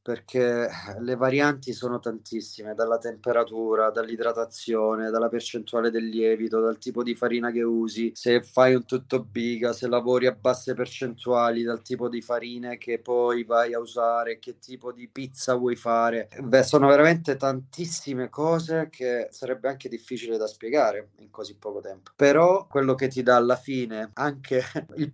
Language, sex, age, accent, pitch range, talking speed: Italian, male, 30-49, native, 115-135 Hz, 160 wpm